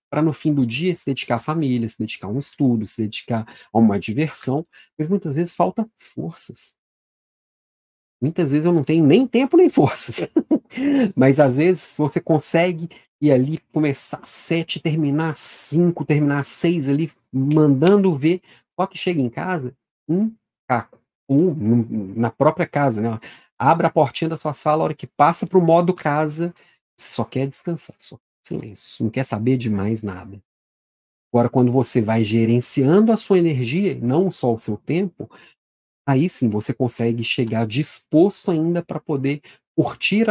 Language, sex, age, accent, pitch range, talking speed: Portuguese, male, 40-59, Brazilian, 130-180 Hz, 170 wpm